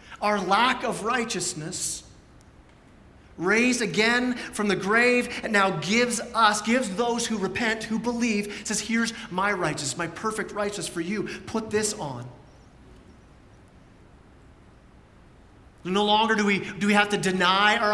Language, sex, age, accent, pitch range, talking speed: English, male, 30-49, American, 190-225 Hz, 135 wpm